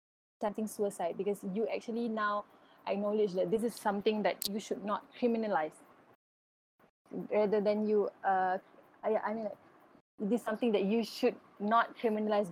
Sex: female